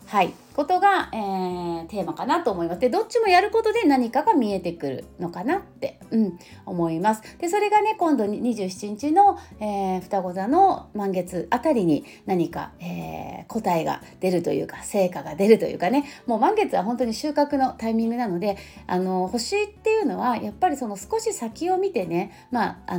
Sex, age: female, 30-49